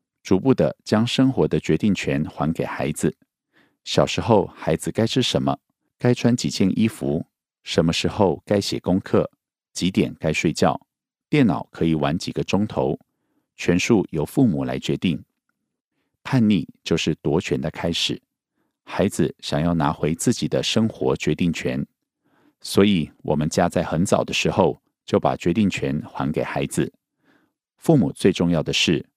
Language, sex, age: Korean, male, 50-69